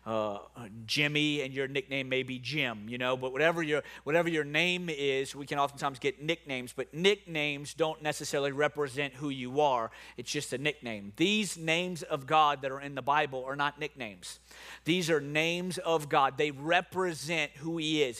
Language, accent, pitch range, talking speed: English, American, 140-175 Hz, 185 wpm